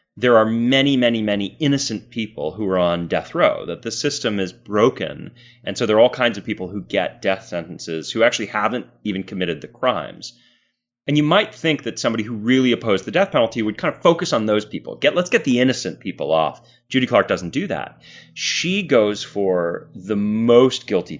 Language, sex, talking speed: English, male, 205 wpm